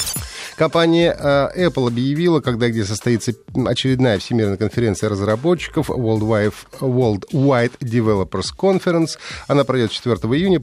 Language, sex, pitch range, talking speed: Russian, male, 105-145 Hz, 115 wpm